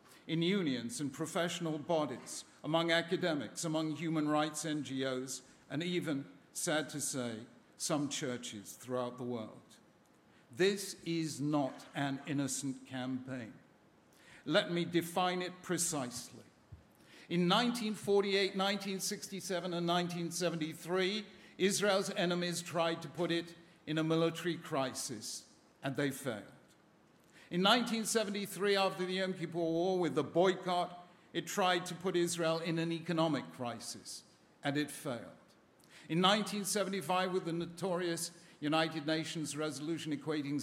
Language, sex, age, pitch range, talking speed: English, male, 50-69, 140-175 Hz, 120 wpm